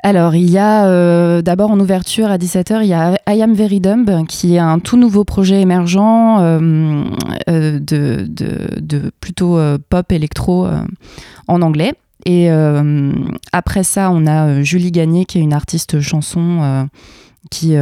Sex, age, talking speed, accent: female, 20-39, 165 wpm, French